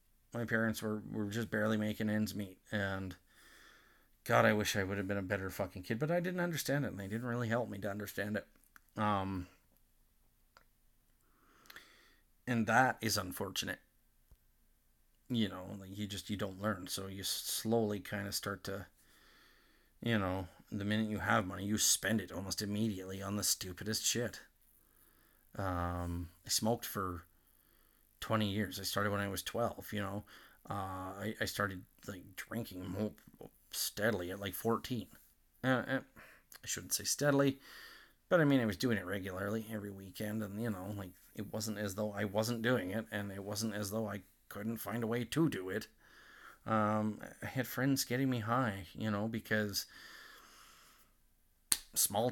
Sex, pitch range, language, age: male, 95-115 Hz, English, 30-49